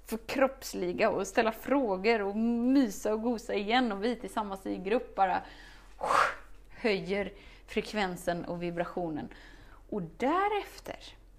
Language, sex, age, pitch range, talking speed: Swedish, female, 20-39, 205-275 Hz, 115 wpm